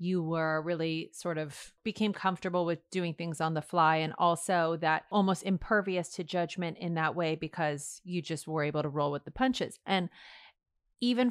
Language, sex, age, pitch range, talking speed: English, female, 30-49, 155-190 Hz, 185 wpm